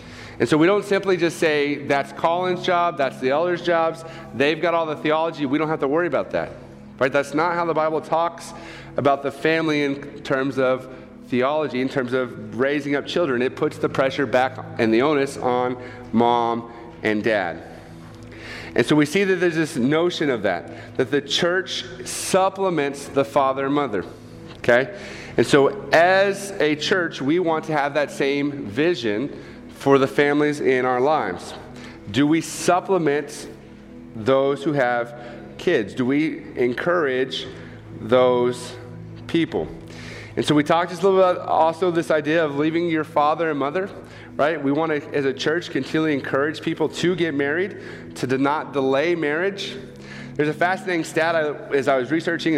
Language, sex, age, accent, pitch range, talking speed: English, male, 40-59, American, 130-165 Hz, 170 wpm